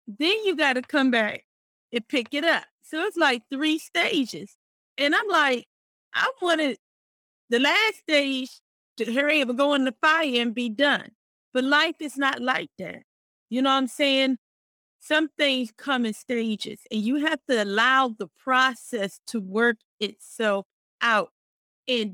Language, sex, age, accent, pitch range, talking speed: English, female, 30-49, American, 225-275 Hz, 170 wpm